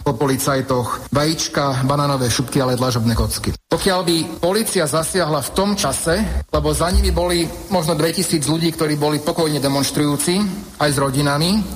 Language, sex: Slovak, male